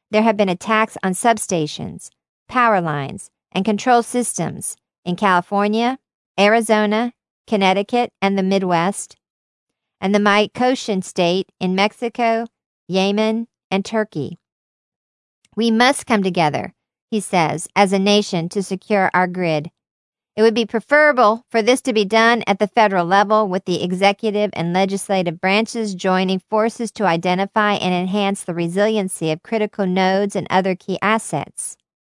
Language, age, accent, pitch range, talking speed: English, 50-69, American, 185-220 Hz, 140 wpm